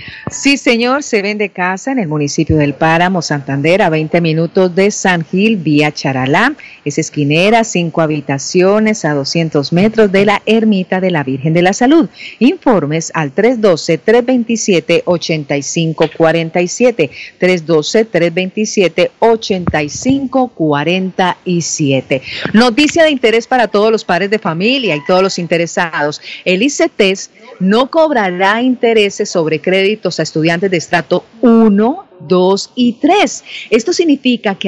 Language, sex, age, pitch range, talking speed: Spanish, female, 50-69, 170-230 Hz, 120 wpm